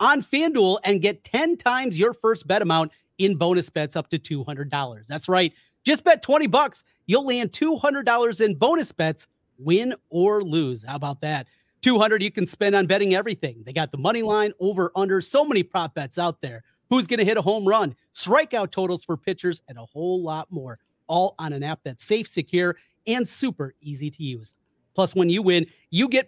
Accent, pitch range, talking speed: American, 155-225 Hz, 205 wpm